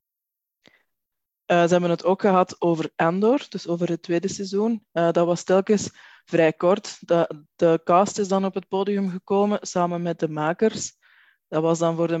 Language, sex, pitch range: Dutch, female, 170-200 Hz